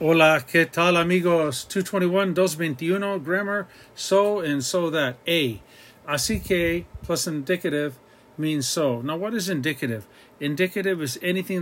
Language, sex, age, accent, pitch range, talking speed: English, male, 40-59, American, 135-170 Hz, 130 wpm